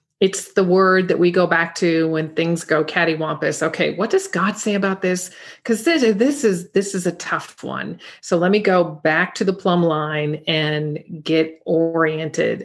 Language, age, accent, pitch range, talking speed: English, 40-59, American, 160-185 Hz, 190 wpm